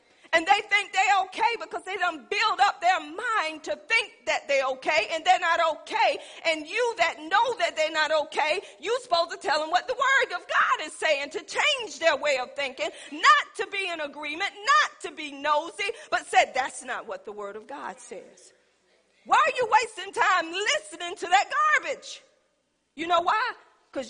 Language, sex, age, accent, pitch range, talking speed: English, female, 40-59, American, 270-380 Hz, 195 wpm